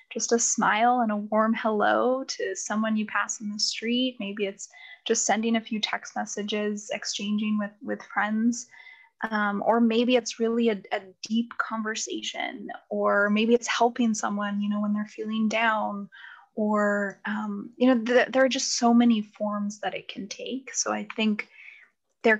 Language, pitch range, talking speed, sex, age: English, 210-245 Hz, 175 wpm, female, 10-29